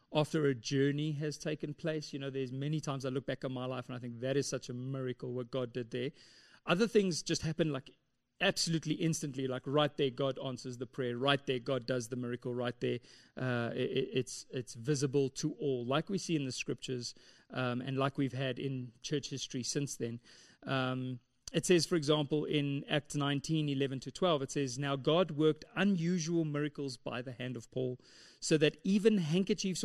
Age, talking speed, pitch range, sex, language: 30-49, 205 wpm, 130-165 Hz, male, English